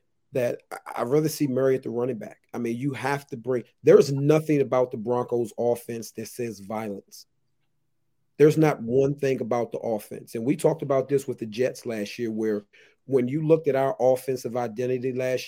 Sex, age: male, 40-59